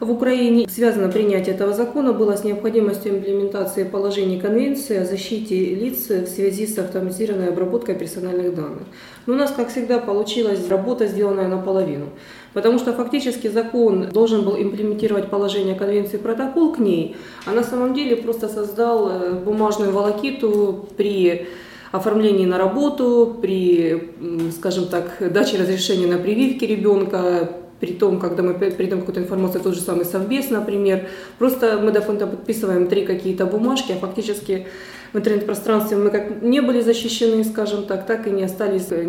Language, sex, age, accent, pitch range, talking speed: Ukrainian, female, 20-39, native, 185-225 Hz, 150 wpm